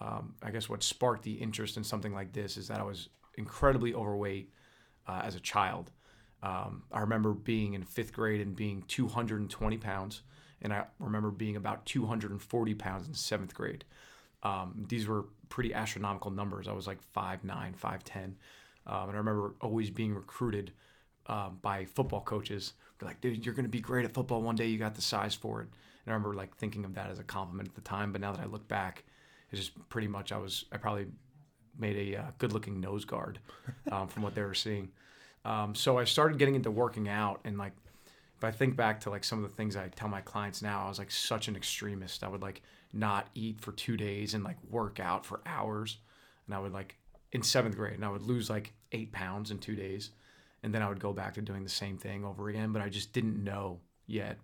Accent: American